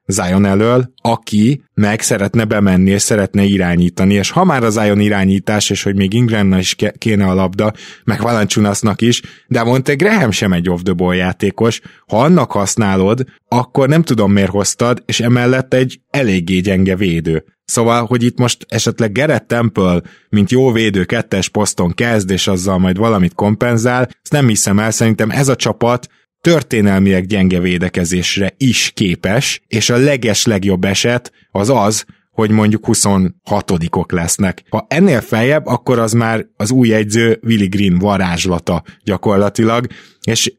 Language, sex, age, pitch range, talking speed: Hungarian, male, 20-39, 95-120 Hz, 150 wpm